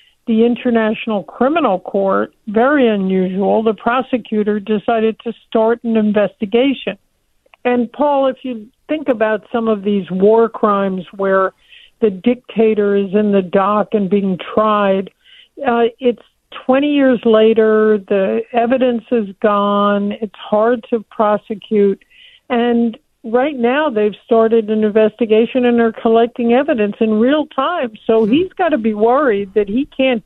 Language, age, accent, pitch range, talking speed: English, 60-79, American, 210-245 Hz, 140 wpm